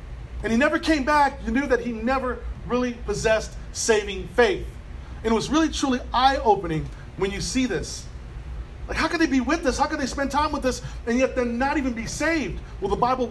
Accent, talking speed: American, 220 wpm